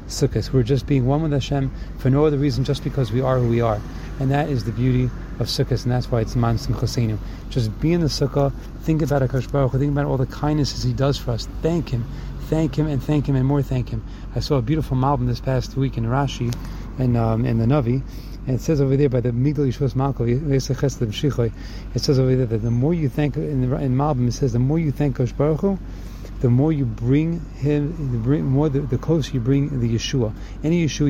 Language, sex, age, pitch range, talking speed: English, male, 30-49, 115-140 Hz, 235 wpm